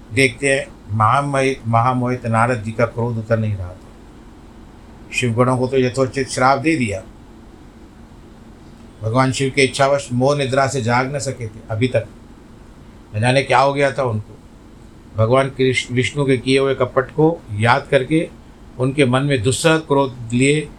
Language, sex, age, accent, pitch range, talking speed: Hindi, male, 50-69, native, 110-135 Hz, 160 wpm